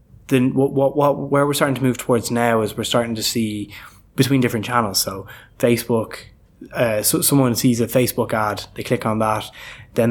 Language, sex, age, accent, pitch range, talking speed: English, male, 10-29, Irish, 110-125 Hz, 190 wpm